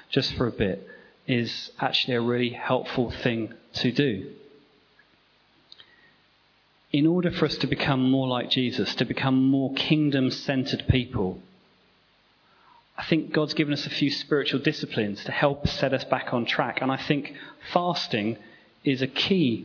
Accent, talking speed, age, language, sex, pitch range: British, 150 wpm, 30-49, English, male, 120-145 Hz